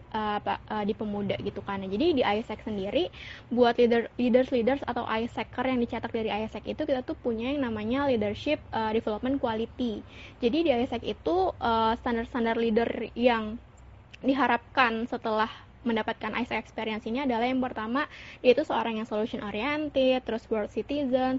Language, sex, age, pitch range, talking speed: Indonesian, female, 20-39, 220-255 Hz, 145 wpm